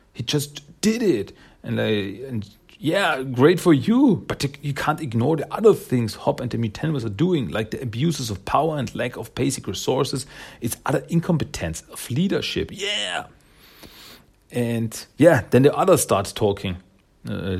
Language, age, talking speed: German, 40-59, 165 wpm